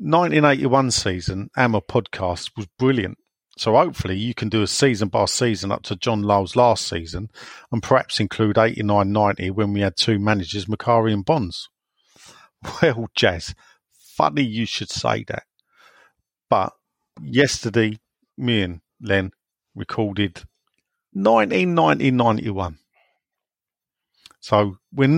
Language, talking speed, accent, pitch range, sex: English, 115 wpm, British, 100-130 Hz, male